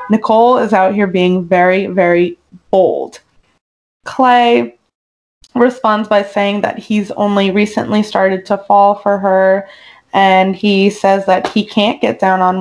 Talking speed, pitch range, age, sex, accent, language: 145 wpm, 190-220 Hz, 20-39, female, American, English